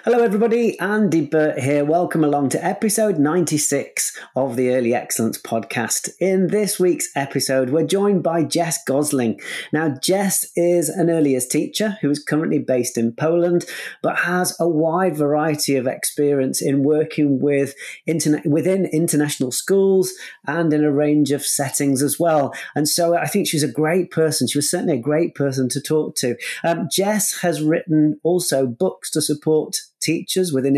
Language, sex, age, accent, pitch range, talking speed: English, male, 30-49, British, 140-180 Hz, 165 wpm